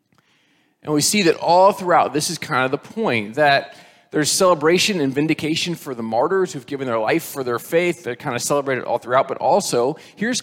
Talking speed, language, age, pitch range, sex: 205 wpm, English, 20-39, 140-180 Hz, male